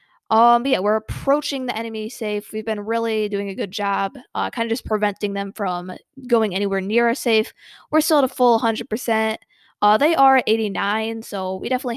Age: 20-39